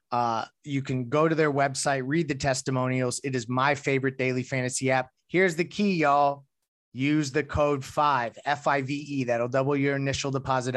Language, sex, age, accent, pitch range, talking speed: English, male, 30-49, American, 125-140 Hz, 190 wpm